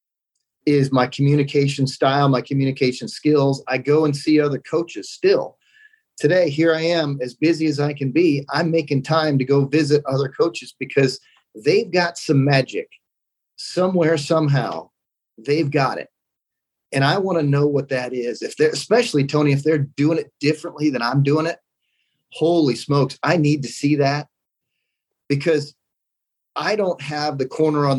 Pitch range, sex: 140-165 Hz, male